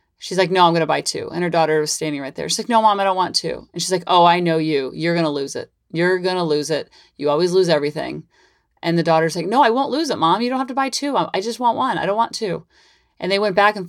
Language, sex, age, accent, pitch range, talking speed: English, female, 30-49, American, 165-200 Hz, 315 wpm